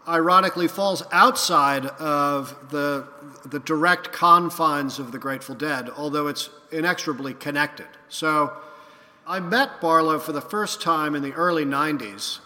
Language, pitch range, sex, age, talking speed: English, 145-165 Hz, male, 50-69, 135 wpm